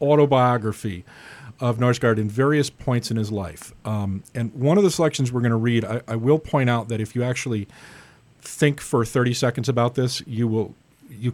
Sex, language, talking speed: male, English, 195 wpm